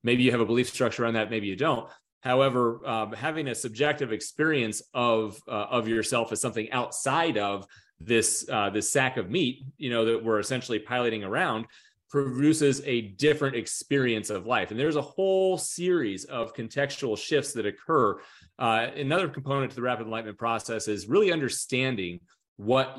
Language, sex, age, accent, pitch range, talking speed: English, male, 30-49, American, 110-140 Hz, 170 wpm